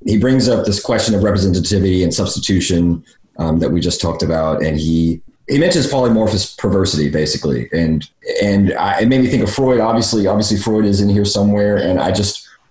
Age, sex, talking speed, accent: 30-49, male, 195 wpm, American